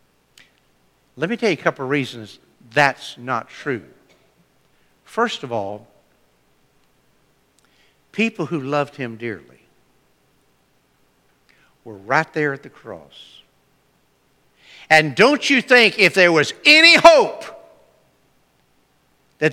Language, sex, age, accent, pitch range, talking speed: English, male, 60-79, American, 145-210 Hz, 110 wpm